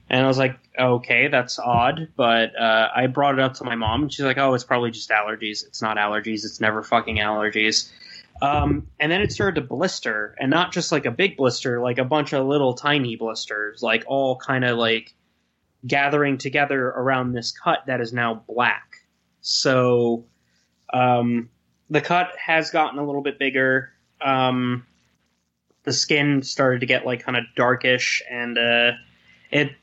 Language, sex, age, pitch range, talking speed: English, male, 20-39, 115-135 Hz, 180 wpm